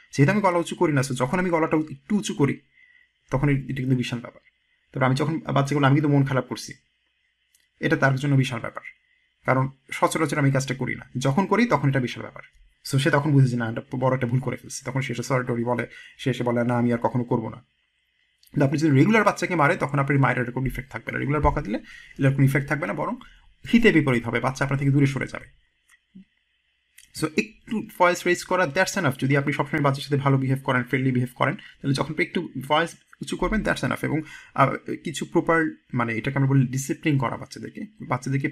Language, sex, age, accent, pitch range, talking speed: Bengali, male, 30-49, native, 130-160 Hz, 185 wpm